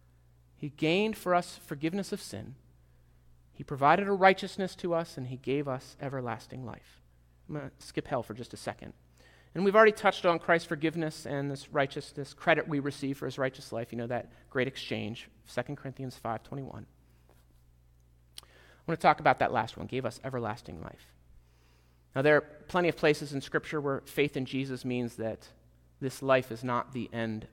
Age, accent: 30-49, American